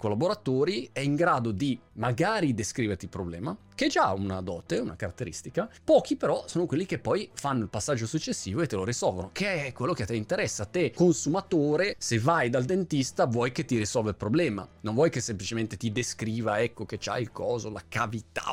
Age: 30-49